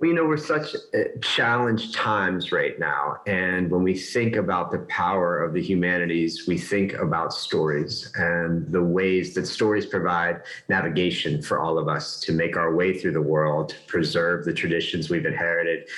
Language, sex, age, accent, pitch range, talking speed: English, male, 30-49, American, 85-110 Hz, 175 wpm